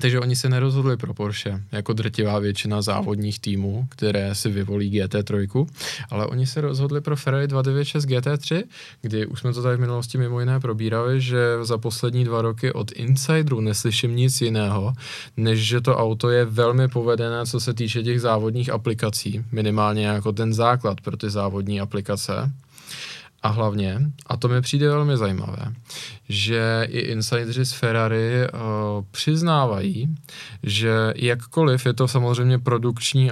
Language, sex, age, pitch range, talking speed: Czech, male, 20-39, 110-135 Hz, 150 wpm